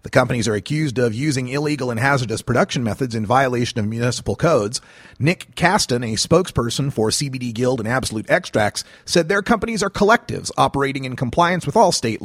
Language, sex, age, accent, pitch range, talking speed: English, male, 30-49, American, 120-170 Hz, 180 wpm